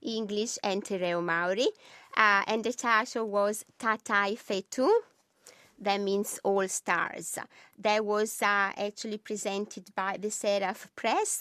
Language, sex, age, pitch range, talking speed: English, female, 20-39, 195-220 Hz, 125 wpm